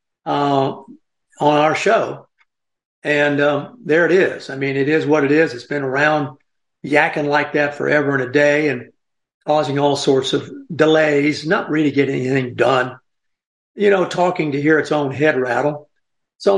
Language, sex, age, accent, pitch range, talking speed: English, male, 60-79, American, 135-155 Hz, 170 wpm